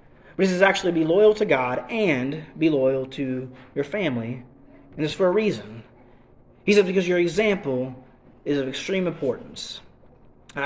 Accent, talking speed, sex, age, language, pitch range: American, 160 wpm, male, 30-49, English, 125-170 Hz